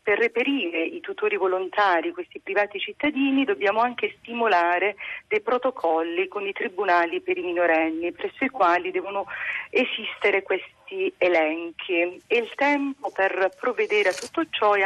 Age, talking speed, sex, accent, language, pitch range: 40-59, 140 wpm, female, native, Italian, 185-250 Hz